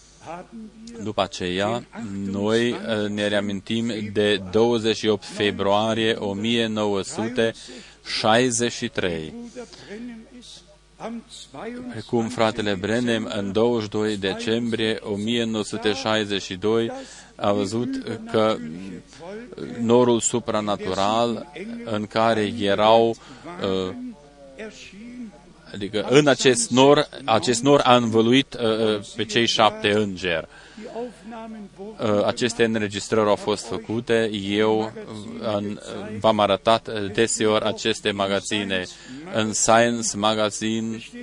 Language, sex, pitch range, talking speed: Romanian, male, 105-125 Hz, 80 wpm